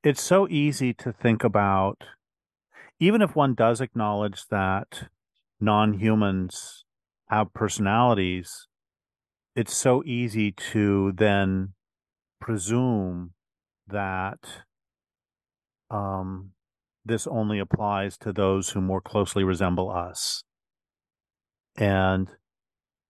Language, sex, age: English, male, 40-59